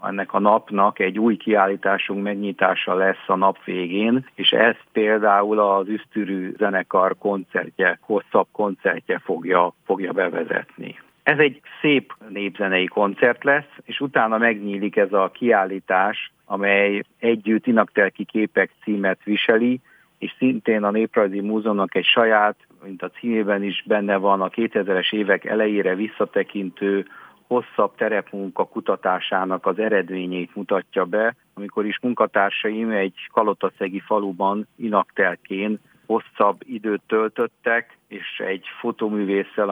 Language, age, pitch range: Hungarian, 50-69, 95-110 Hz